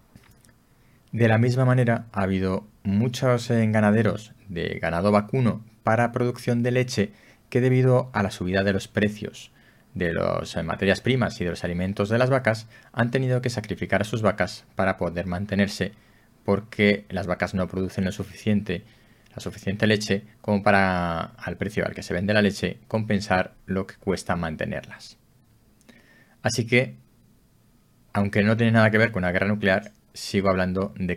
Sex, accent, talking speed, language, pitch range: male, Spanish, 160 wpm, Spanish, 95-115 Hz